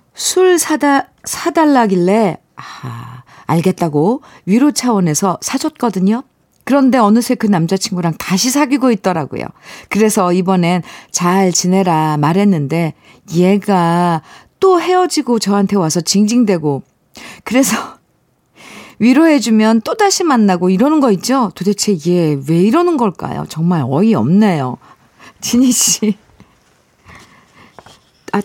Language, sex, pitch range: Korean, female, 170-235 Hz